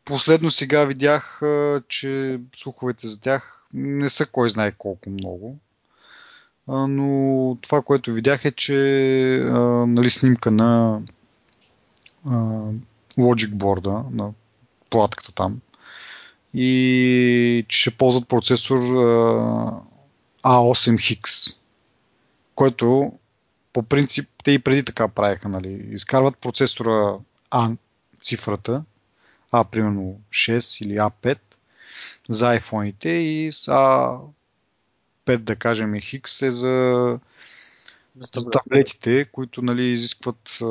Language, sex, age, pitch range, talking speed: Bulgarian, male, 30-49, 110-130 Hz, 100 wpm